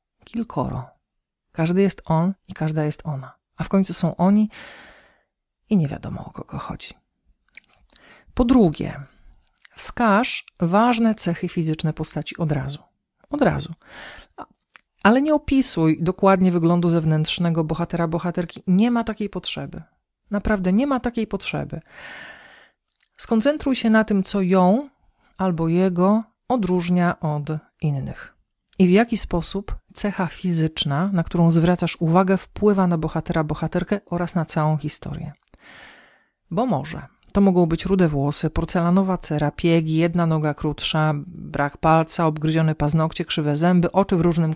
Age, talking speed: 40-59, 130 wpm